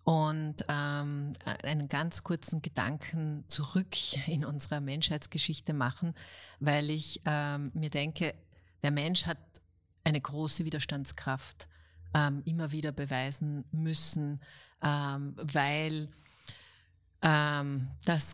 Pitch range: 140-160 Hz